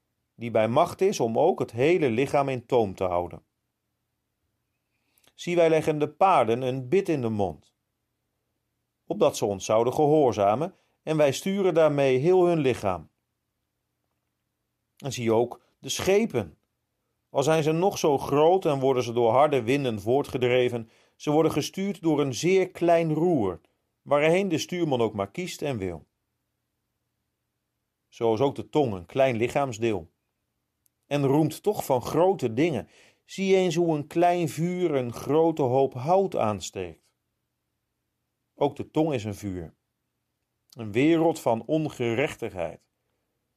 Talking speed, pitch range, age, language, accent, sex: 145 wpm, 115-160 Hz, 40-59, Dutch, Dutch, male